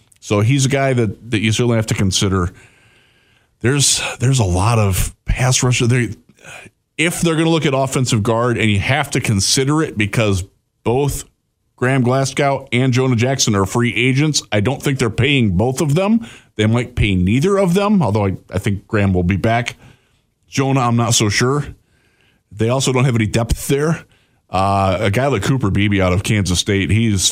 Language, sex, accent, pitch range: English, male, American, 100-130 Hz